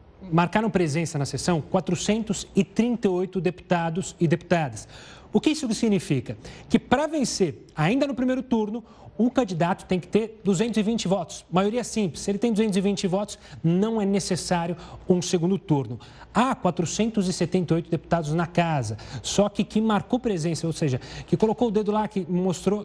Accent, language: Brazilian, Portuguese